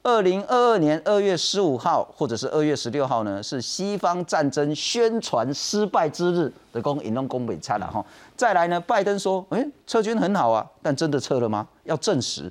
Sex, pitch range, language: male, 130-195 Hz, Chinese